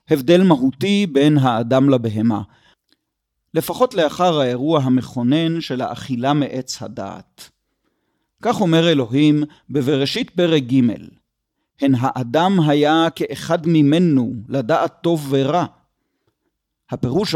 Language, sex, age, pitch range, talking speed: Hebrew, male, 40-59, 135-170 Hz, 95 wpm